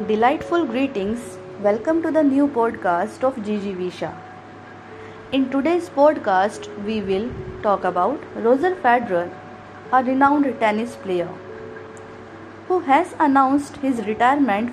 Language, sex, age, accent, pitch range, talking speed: Hindi, female, 20-39, native, 195-285 Hz, 115 wpm